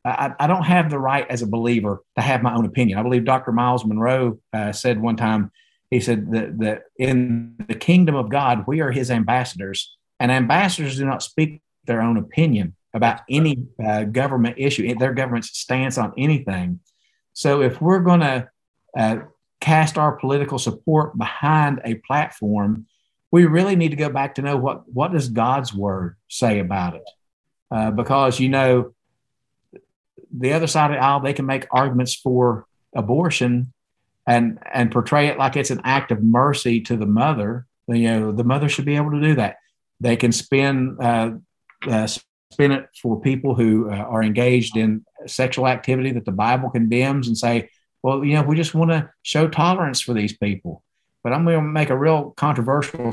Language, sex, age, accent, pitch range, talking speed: English, male, 50-69, American, 115-145 Hz, 185 wpm